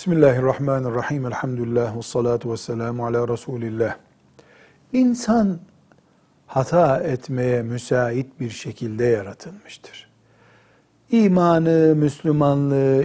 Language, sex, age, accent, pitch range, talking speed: Turkish, male, 60-79, native, 120-170 Hz, 70 wpm